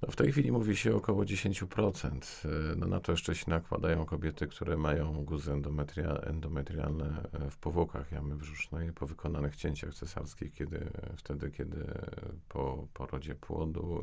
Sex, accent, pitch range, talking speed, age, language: male, native, 70-85 Hz, 145 wpm, 40-59, Polish